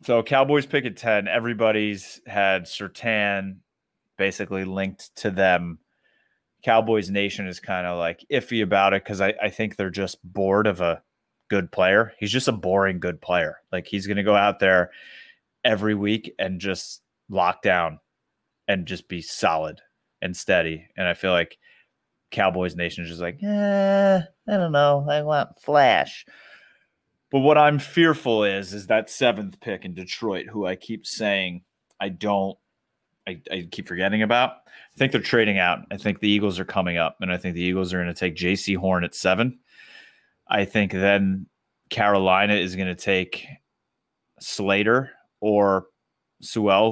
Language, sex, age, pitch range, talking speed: English, male, 30-49, 95-110 Hz, 170 wpm